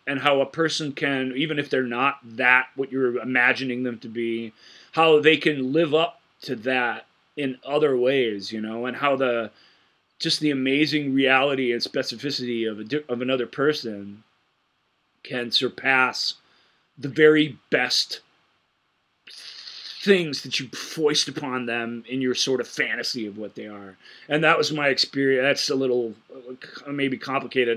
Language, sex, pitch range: English, male, 115-135 Hz